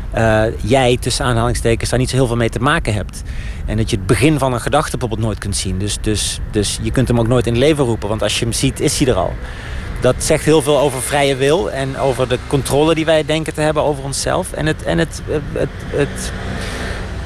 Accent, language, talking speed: Dutch, Dutch, 245 wpm